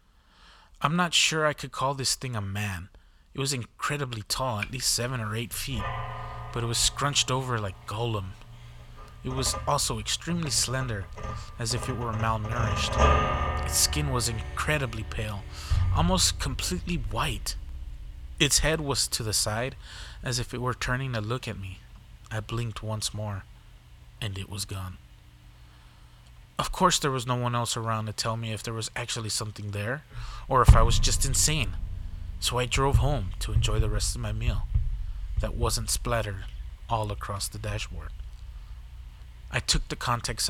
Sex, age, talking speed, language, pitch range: male, 20-39, 165 wpm, English, 100-120 Hz